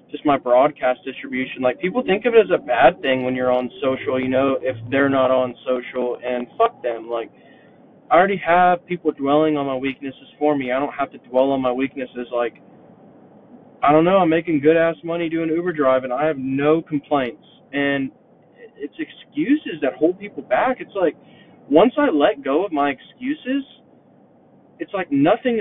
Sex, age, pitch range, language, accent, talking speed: male, 20-39, 135-185 Hz, English, American, 190 wpm